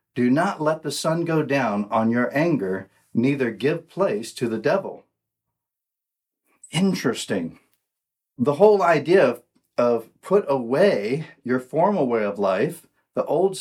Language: English